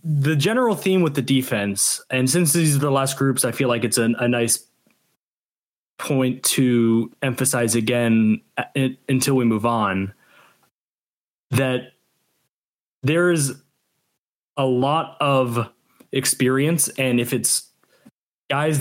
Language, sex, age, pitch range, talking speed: English, male, 20-39, 120-145 Hz, 130 wpm